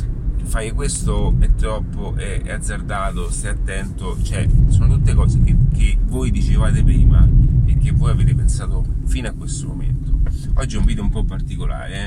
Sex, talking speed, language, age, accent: male, 170 wpm, Italian, 30-49, native